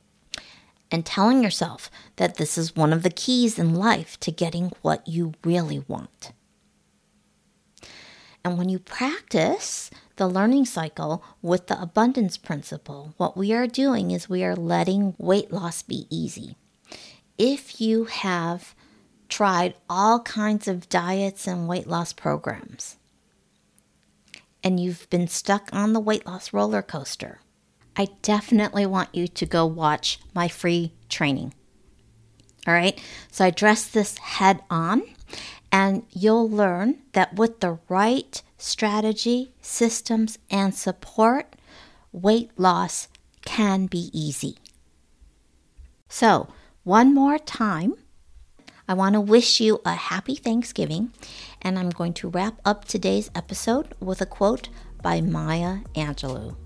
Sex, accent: female, American